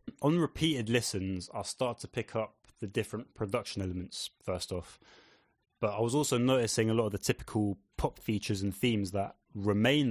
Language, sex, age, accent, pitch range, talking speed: English, male, 20-39, British, 105-130 Hz, 180 wpm